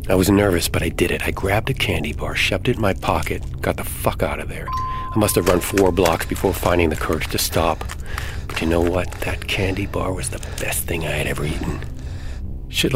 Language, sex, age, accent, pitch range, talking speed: English, male, 40-59, American, 80-100 Hz, 235 wpm